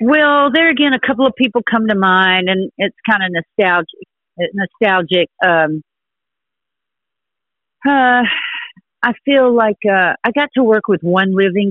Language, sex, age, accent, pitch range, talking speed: English, female, 50-69, American, 175-220 Hz, 150 wpm